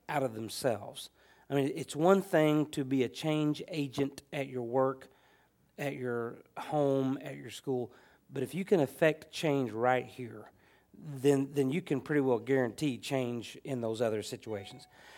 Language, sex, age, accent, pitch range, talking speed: English, male, 40-59, American, 120-140 Hz, 165 wpm